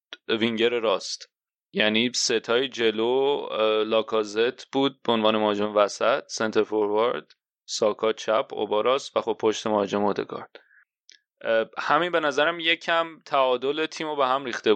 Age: 30-49